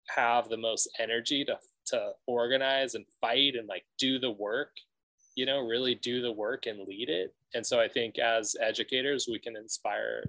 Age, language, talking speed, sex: 20-39, English, 185 wpm, male